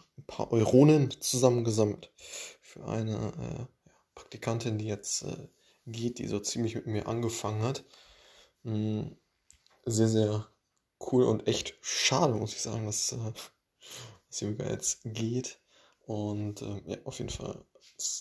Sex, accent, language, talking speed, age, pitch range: male, German, German, 135 wpm, 20-39, 105-120 Hz